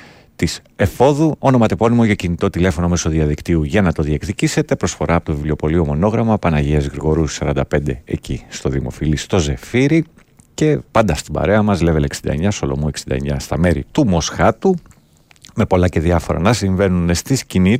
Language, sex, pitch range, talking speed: Greek, male, 80-115 Hz, 155 wpm